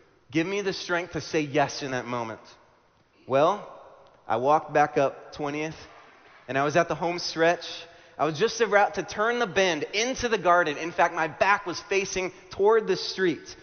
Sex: male